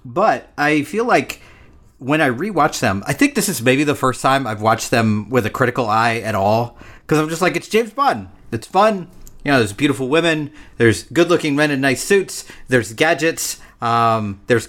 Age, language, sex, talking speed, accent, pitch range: 40-59, English, male, 205 wpm, American, 110-155 Hz